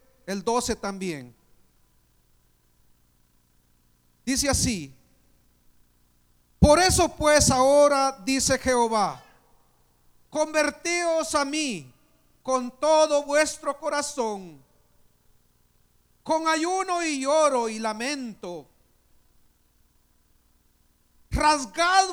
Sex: male